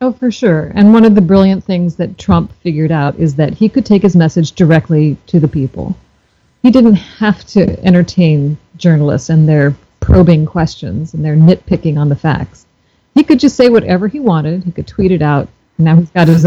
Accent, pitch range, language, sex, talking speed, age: American, 160-215 Hz, English, female, 205 wpm, 40-59